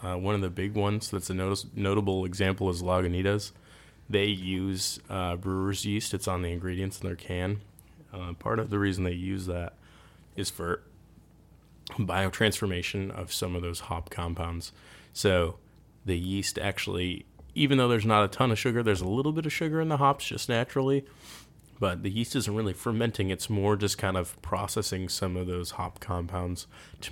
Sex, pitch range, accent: male, 90-105 Hz, American